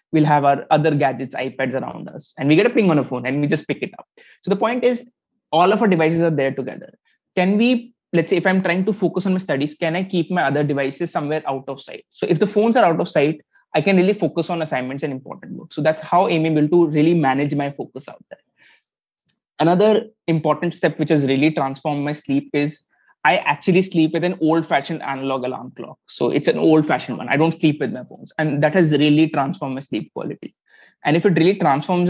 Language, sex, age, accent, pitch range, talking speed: English, male, 20-39, Indian, 145-180 Hz, 235 wpm